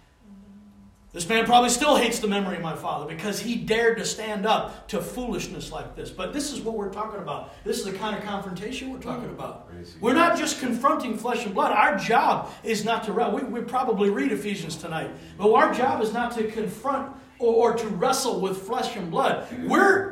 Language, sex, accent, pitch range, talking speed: English, male, American, 200-255 Hz, 205 wpm